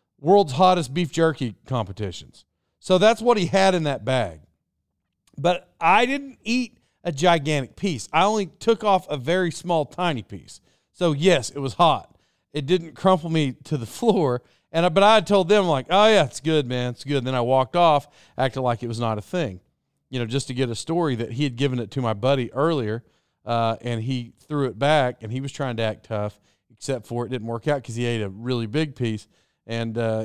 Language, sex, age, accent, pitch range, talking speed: English, male, 40-59, American, 130-185 Hz, 220 wpm